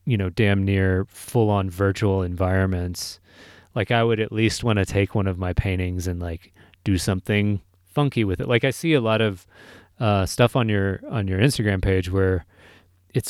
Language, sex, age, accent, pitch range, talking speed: English, male, 30-49, American, 90-110 Hz, 195 wpm